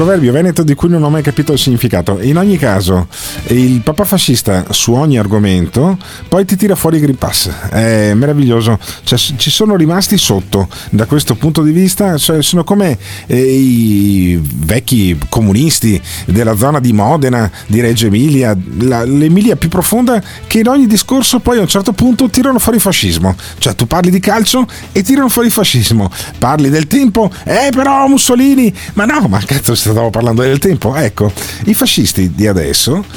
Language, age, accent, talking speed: Italian, 40-59, native, 175 wpm